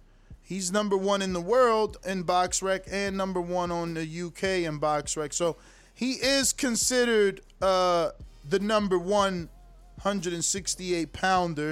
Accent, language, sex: American, English, male